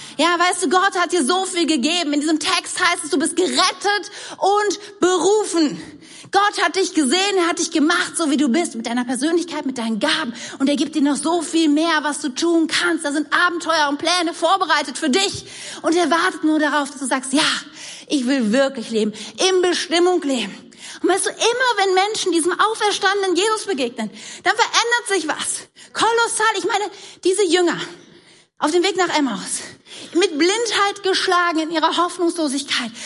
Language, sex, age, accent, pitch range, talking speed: German, female, 40-59, German, 275-365 Hz, 185 wpm